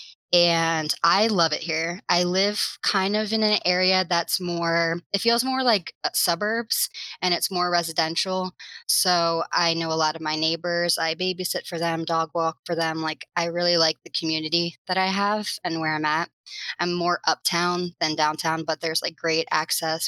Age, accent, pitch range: 20-39, American, 165-190 Hz